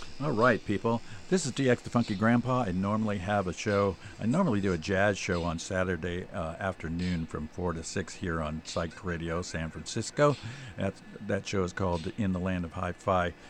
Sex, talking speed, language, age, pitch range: male, 190 wpm, English, 50-69, 85-105 Hz